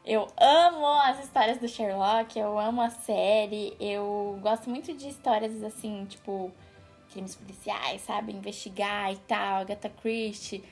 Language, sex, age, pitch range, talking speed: Portuguese, female, 10-29, 215-295 Hz, 140 wpm